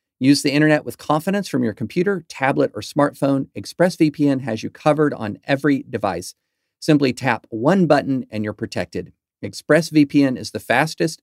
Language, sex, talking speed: English, male, 155 wpm